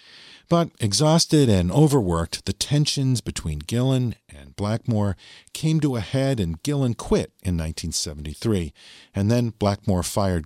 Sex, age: male, 50-69